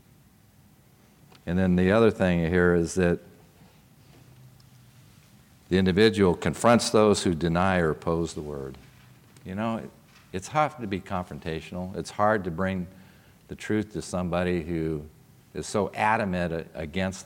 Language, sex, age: English, male, 50-69